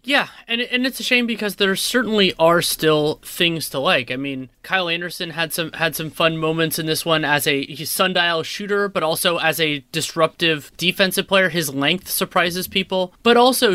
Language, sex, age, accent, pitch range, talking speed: English, male, 20-39, American, 150-195 Hz, 190 wpm